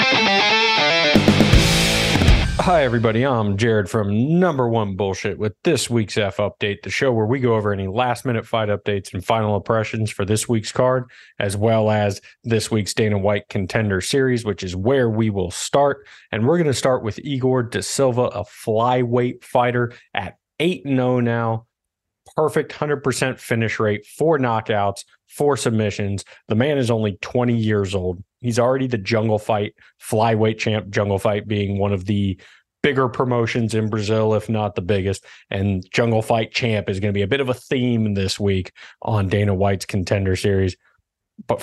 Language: English